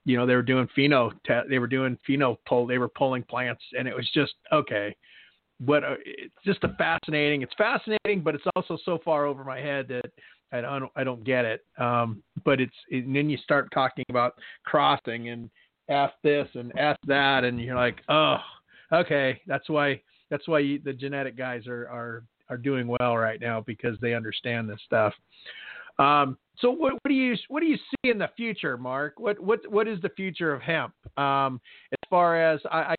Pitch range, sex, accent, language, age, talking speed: 130-160 Hz, male, American, English, 40-59, 200 wpm